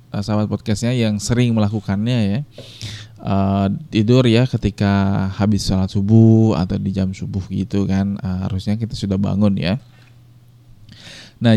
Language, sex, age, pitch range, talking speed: Indonesian, male, 20-39, 105-125 Hz, 135 wpm